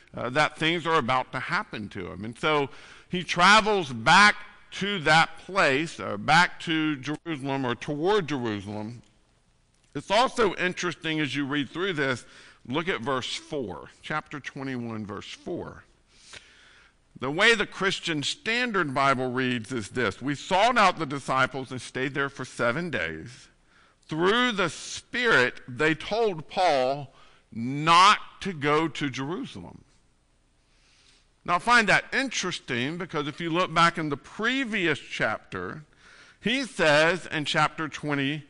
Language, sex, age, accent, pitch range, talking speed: English, male, 50-69, American, 130-180 Hz, 140 wpm